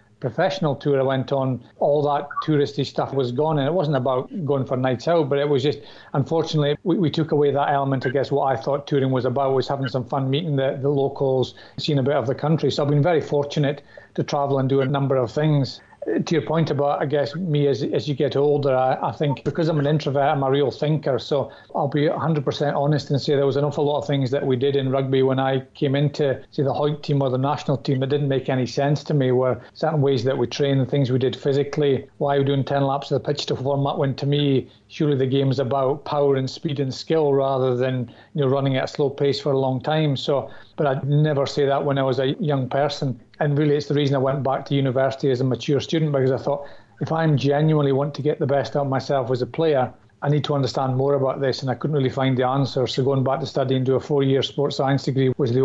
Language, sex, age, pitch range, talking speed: English, male, 40-59, 135-145 Hz, 265 wpm